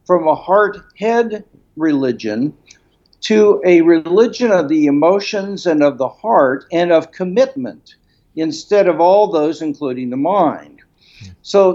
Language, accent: English, American